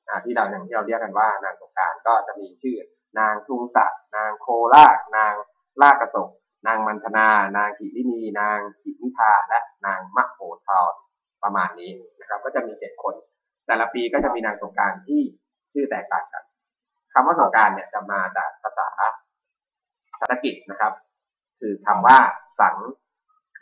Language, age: Thai, 20-39